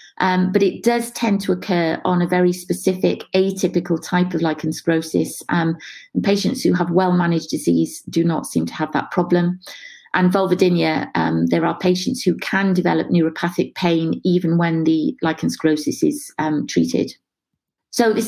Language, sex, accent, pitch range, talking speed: English, female, British, 170-215 Hz, 165 wpm